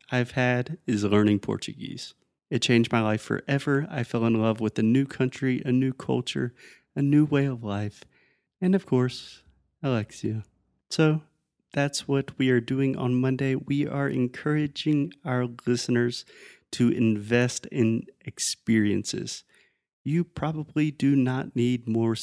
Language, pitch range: Portuguese, 115-140 Hz